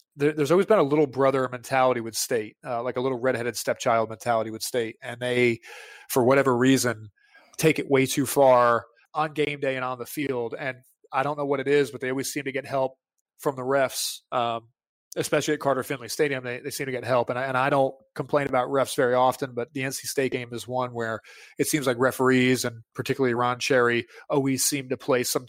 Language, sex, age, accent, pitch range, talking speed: English, male, 30-49, American, 120-140 Hz, 220 wpm